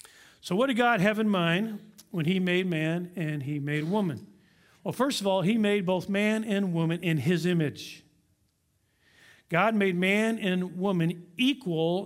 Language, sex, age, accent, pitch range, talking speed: English, male, 50-69, American, 170-215 Hz, 170 wpm